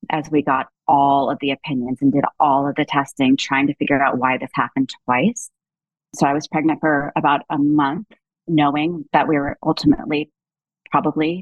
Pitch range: 145-175 Hz